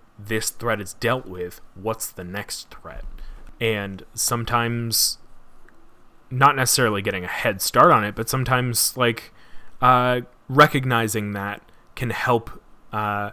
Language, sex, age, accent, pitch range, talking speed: English, male, 30-49, American, 100-115 Hz, 125 wpm